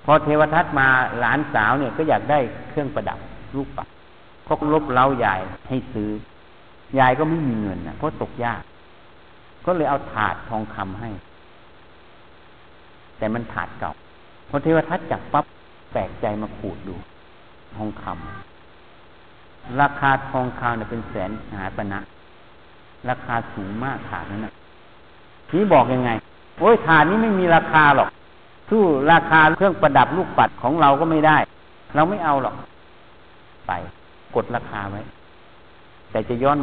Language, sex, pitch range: Thai, male, 100-145 Hz